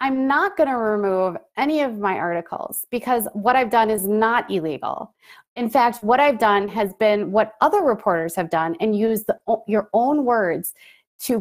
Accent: American